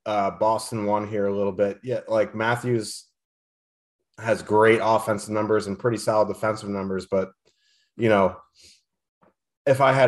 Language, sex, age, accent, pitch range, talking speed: English, male, 30-49, American, 100-120 Hz, 150 wpm